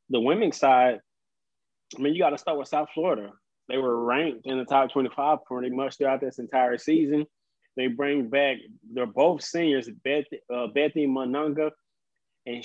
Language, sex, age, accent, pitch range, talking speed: English, male, 20-39, American, 130-155 Hz, 175 wpm